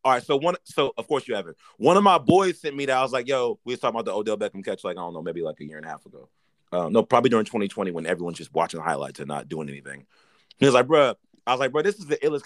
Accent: American